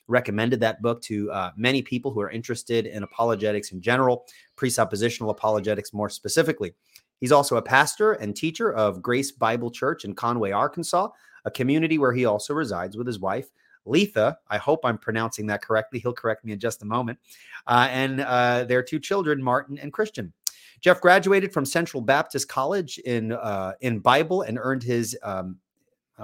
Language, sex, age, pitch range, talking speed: English, male, 30-49, 110-145 Hz, 175 wpm